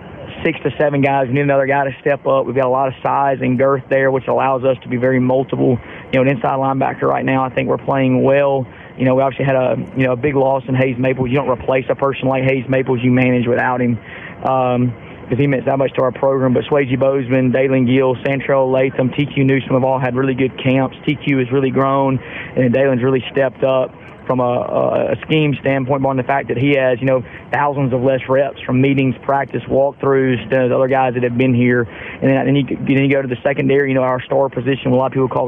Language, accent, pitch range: English, American, 130-135 Hz